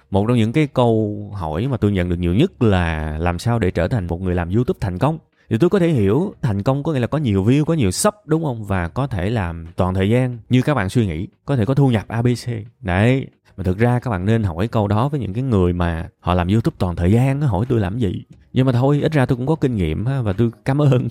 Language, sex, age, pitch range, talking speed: Vietnamese, male, 20-39, 95-130 Hz, 280 wpm